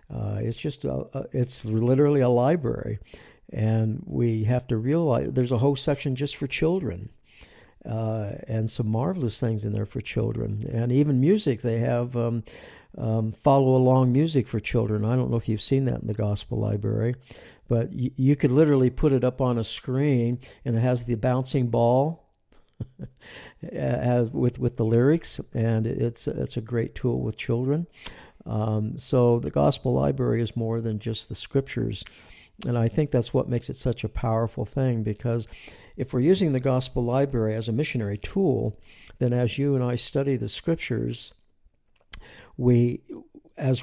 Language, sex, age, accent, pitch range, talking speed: English, male, 60-79, American, 110-130 Hz, 175 wpm